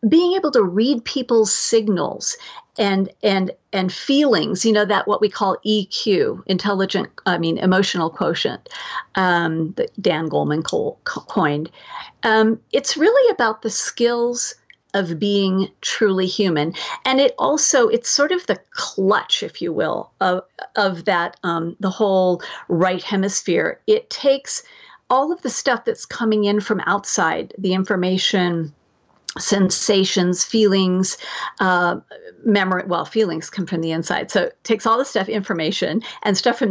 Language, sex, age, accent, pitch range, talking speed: English, female, 50-69, American, 185-250 Hz, 145 wpm